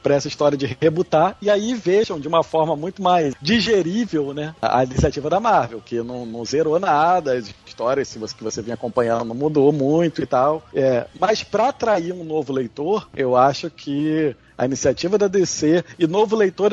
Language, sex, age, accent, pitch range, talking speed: Portuguese, male, 40-59, Brazilian, 140-195 Hz, 195 wpm